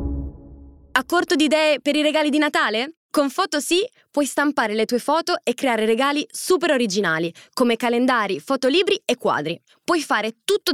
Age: 20-39